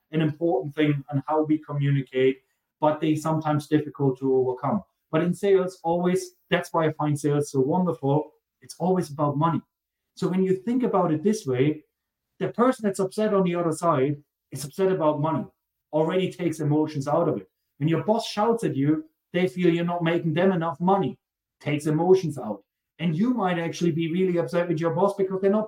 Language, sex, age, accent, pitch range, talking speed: English, male, 30-49, German, 150-190 Hz, 195 wpm